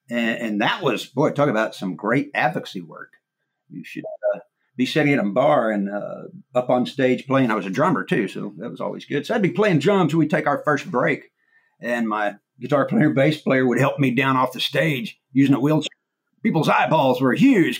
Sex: male